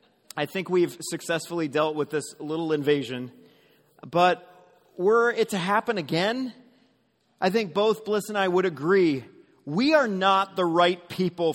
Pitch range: 165-215 Hz